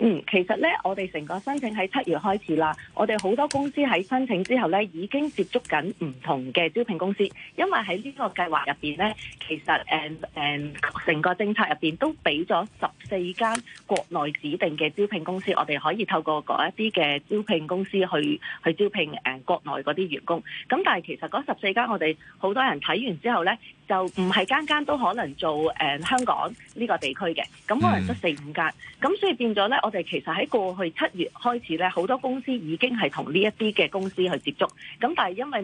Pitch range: 165-230 Hz